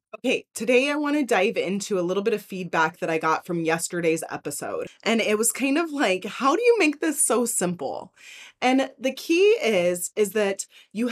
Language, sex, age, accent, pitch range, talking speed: English, female, 20-39, American, 220-320 Hz, 205 wpm